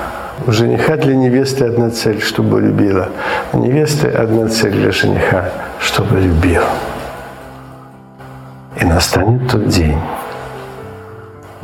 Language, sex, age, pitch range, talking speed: Ukrainian, male, 60-79, 95-125 Hz, 105 wpm